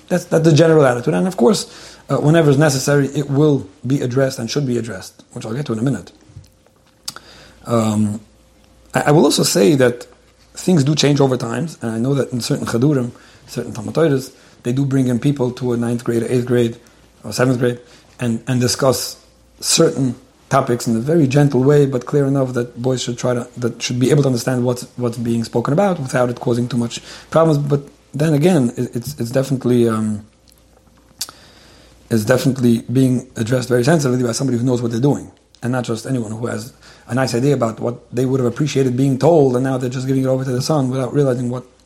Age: 40-59